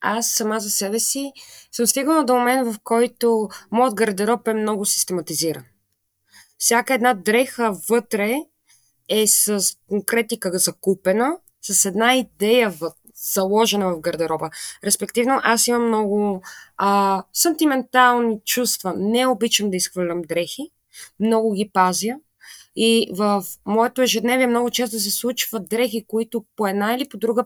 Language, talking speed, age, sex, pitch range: Bulgarian, 135 wpm, 20-39, female, 195-240 Hz